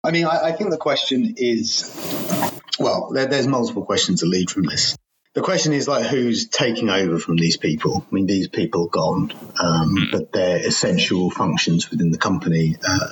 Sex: male